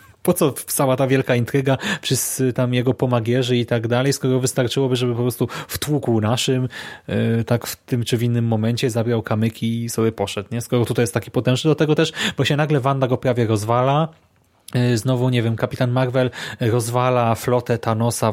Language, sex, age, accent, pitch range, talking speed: Polish, male, 30-49, native, 120-140 Hz, 185 wpm